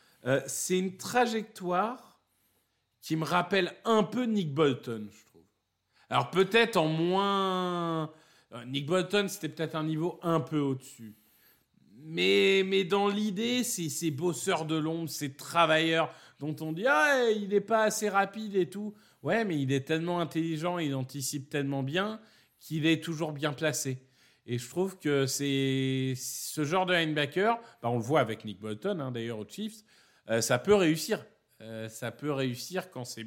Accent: French